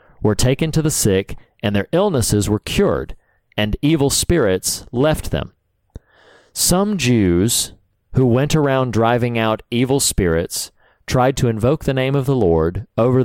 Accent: American